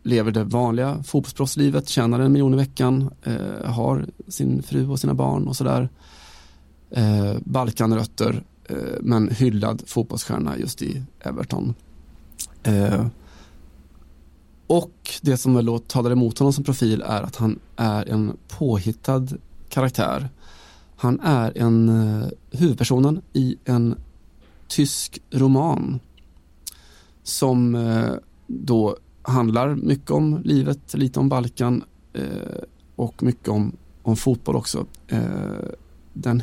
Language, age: Swedish, 20-39